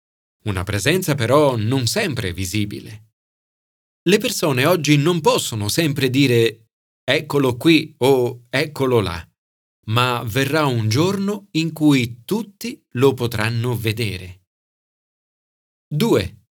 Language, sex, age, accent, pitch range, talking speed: Italian, male, 40-59, native, 110-155 Hz, 105 wpm